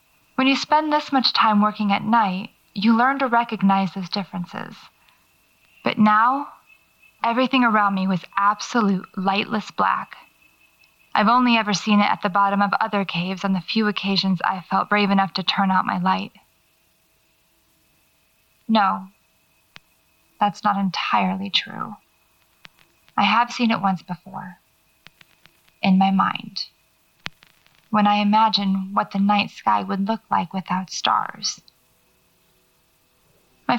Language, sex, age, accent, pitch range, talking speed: English, female, 20-39, American, 190-220 Hz, 135 wpm